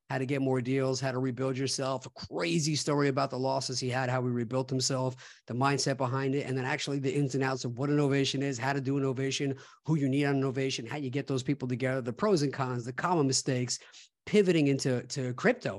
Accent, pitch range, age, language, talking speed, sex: American, 130-140 Hz, 50-69, English, 235 wpm, male